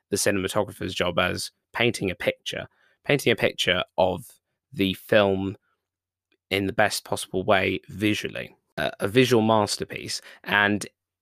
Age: 20-39